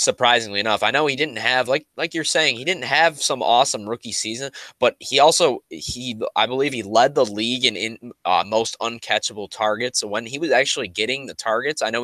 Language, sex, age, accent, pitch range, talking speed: English, male, 20-39, American, 110-140 Hz, 220 wpm